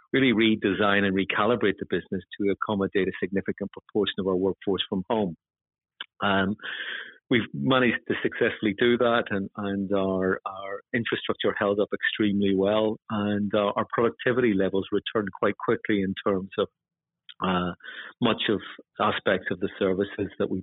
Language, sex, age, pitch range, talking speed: English, male, 50-69, 95-110 Hz, 150 wpm